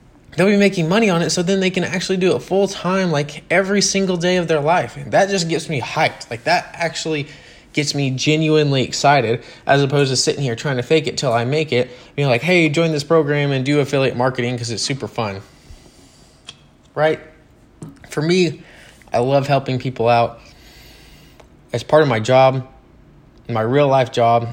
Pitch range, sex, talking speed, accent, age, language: 115-155 Hz, male, 190 wpm, American, 20-39, English